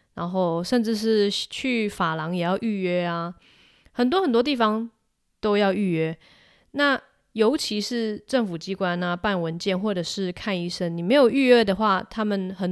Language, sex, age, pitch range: Chinese, female, 20-39, 180-235 Hz